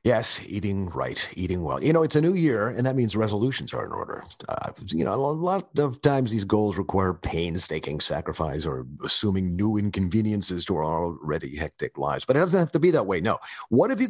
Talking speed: 215 wpm